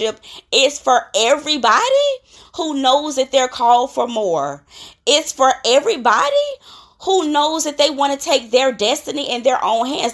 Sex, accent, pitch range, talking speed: female, American, 210-275 Hz, 155 wpm